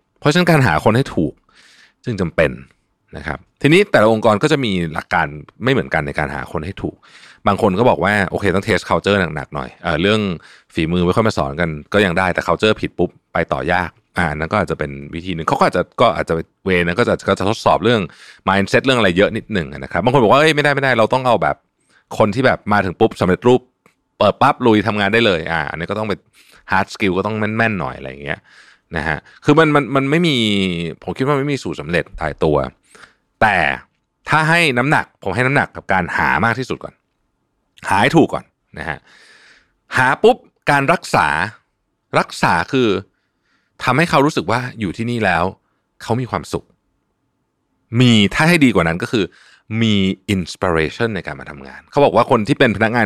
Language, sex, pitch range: Thai, male, 85-115 Hz